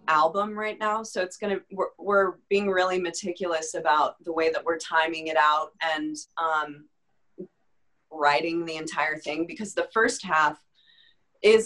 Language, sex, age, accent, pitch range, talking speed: English, female, 20-39, American, 145-180 Hz, 155 wpm